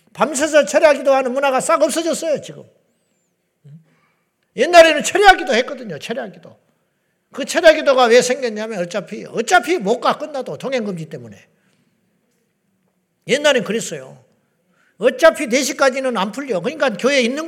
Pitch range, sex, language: 185-280 Hz, male, Korean